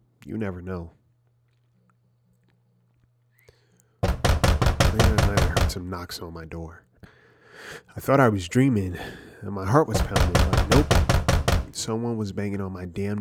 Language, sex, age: English, male, 30-49